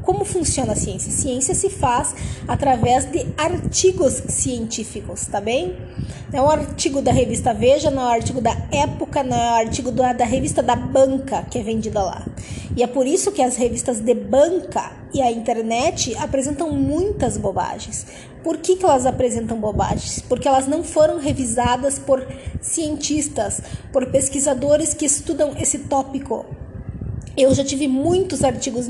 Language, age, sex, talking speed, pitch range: Portuguese, 20-39, female, 160 wpm, 240-290 Hz